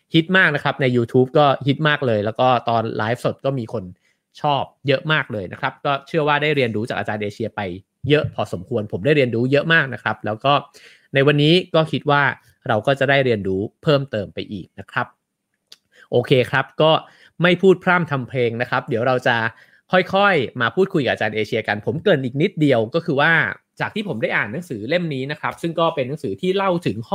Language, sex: English, male